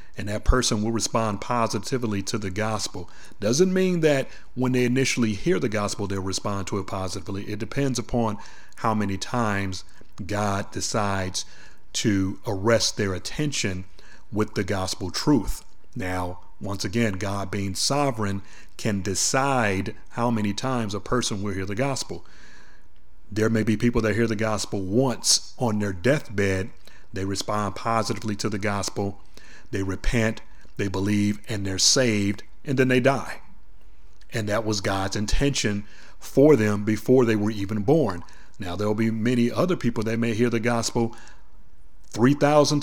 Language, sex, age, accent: English, male, 40-59, American